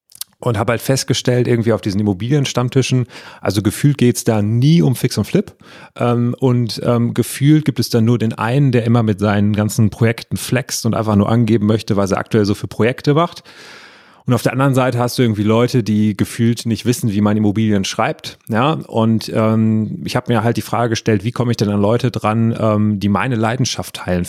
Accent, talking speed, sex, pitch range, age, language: German, 200 wpm, male, 105-125 Hz, 30-49, German